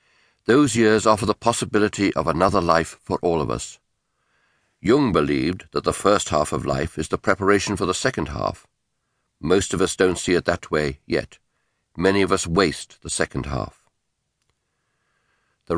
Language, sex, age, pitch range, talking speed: English, male, 60-79, 80-105 Hz, 165 wpm